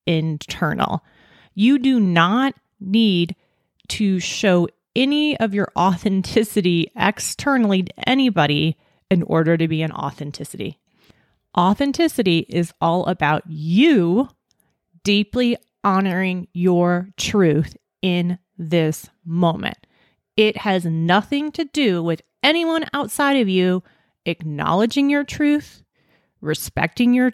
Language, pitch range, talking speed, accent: English, 165-220 Hz, 105 wpm, American